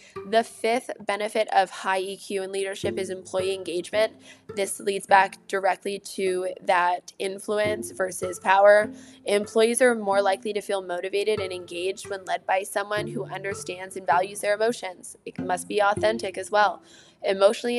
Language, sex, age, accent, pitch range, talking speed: English, female, 10-29, American, 190-230 Hz, 155 wpm